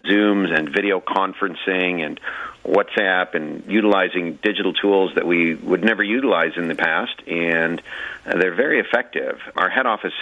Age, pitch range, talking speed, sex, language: 40-59, 85-100 Hz, 145 wpm, male, English